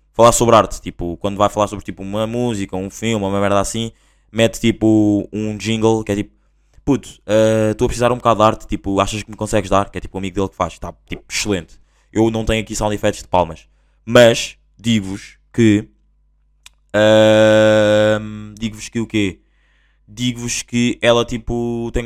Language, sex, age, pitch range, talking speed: Portuguese, male, 20-39, 95-115 Hz, 185 wpm